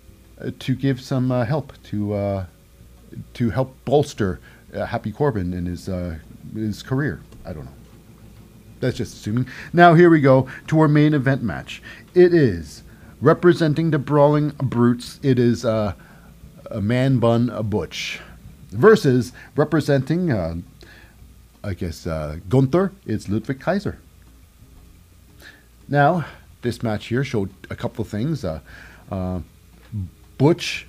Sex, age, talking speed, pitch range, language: male, 40-59, 130 wpm, 95-145 Hz, English